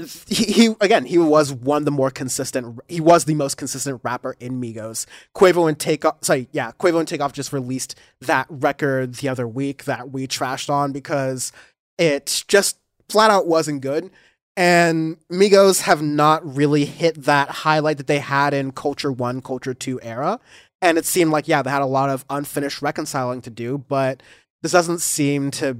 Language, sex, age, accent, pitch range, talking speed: English, male, 20-39, American, 130-160 Hz, 185 wpm